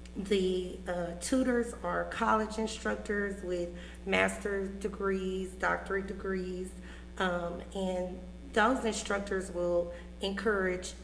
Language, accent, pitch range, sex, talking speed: English, American, 170-210 Hz, female, 90 wpm